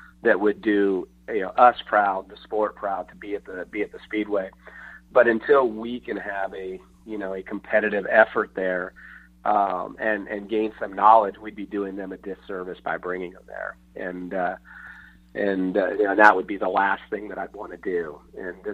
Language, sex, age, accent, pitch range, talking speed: English, male, 30-49, American, 95-110 Hz, 205 wpm